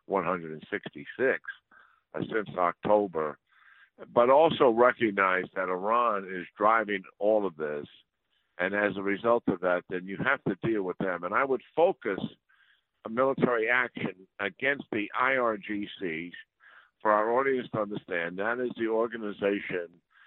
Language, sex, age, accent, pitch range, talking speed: English, male, 60-79, American, 90-110 Hz, 135 wpm